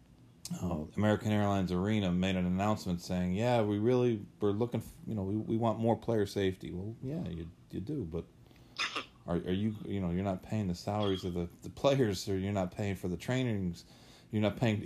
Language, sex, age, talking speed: English, male, 40-59, 215 wpm